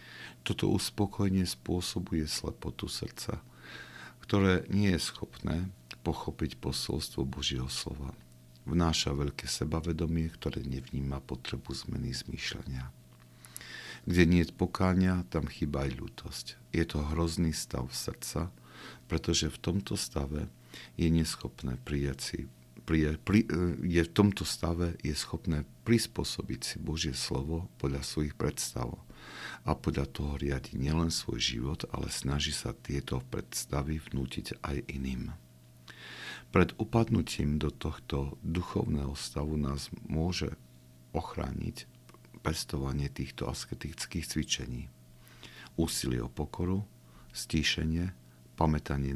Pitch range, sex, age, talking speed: 65-85 Hz, male, 50-69, 105 wpm